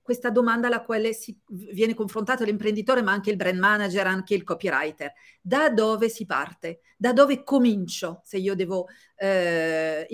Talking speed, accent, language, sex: 160 wpm, native, Italian, female